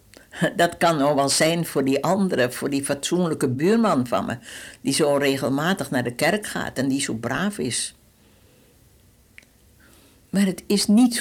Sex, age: female, 60-79